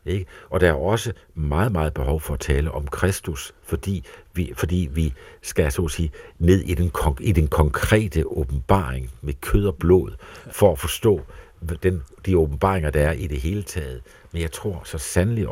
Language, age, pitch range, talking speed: Danish, 60-79, 80-95 Hz, 190 wpm